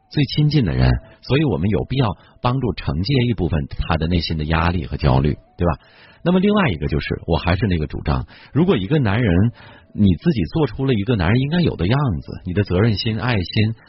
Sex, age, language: male, 50-69, Chinese